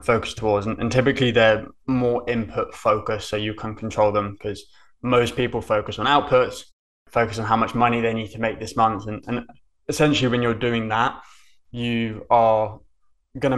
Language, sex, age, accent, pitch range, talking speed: English, male, 20-39, British, 105-125 Hz, 180 wpm